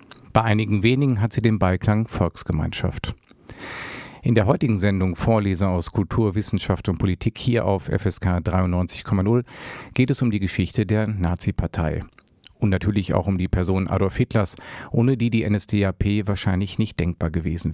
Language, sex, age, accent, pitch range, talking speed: German, male, 50-69, German, 95-115 Hz, 150 wpm